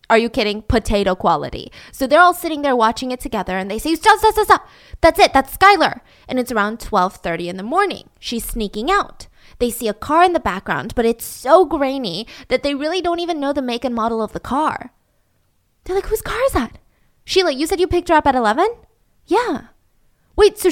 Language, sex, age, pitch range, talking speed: English, female, 10-29, 220-330 Hz, 220 wpm